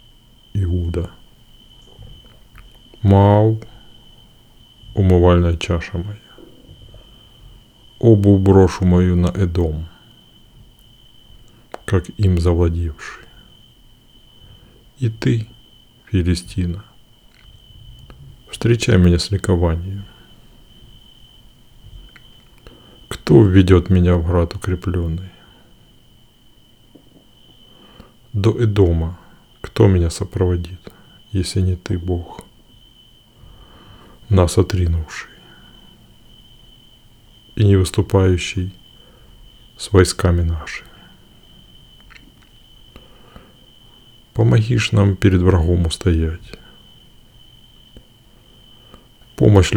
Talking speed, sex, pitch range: 60 wpm, male, 90-115 Hz